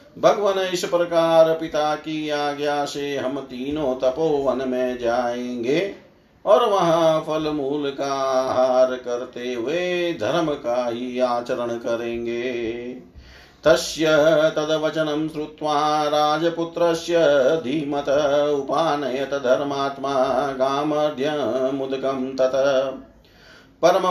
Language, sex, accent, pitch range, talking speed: Hindi, male, native, 130-155 Hz, 90 wpm